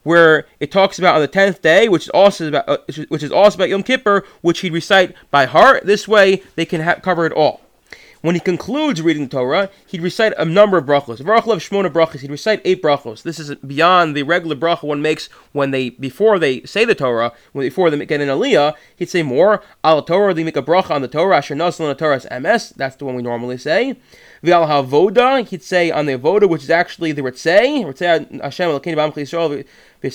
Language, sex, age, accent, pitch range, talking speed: English, male, 20-39, American, 150-200 Hz, 200 wpm